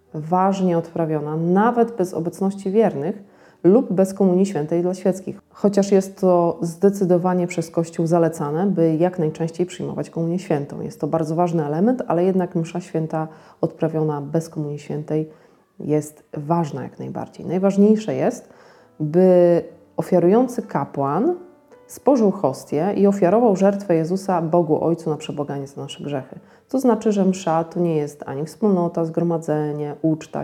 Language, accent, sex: Polish, native, female